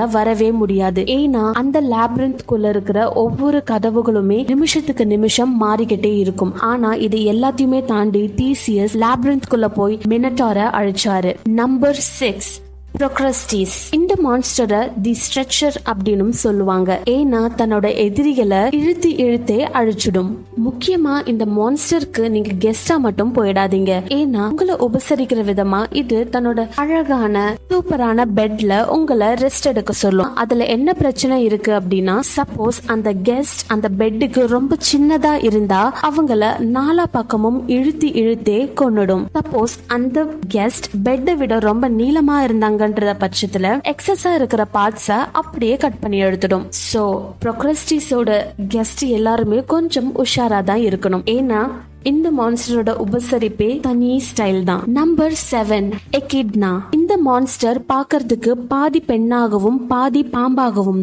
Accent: native